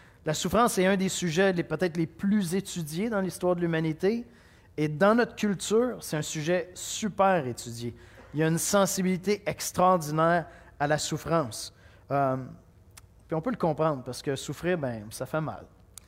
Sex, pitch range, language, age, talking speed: male, 100-165 Hz, French, 30-49, 170 wpm